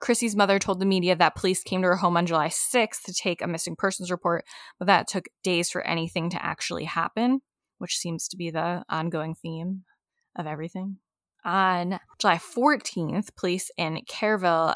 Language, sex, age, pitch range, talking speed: English, female, 10-29, 170-210 Hz, 180 wpm